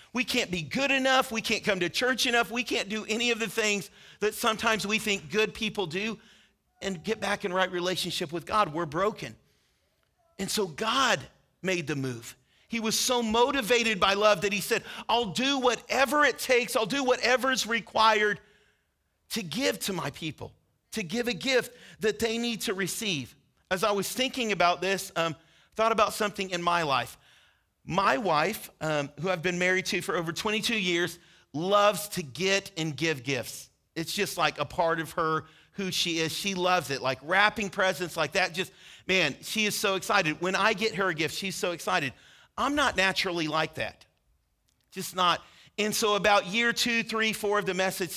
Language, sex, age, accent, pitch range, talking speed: English, male, 40-59, American, 170-220 Hz, 190 wpm